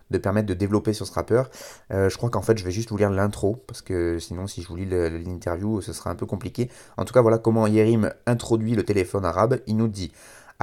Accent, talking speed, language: French, 260 wpm, French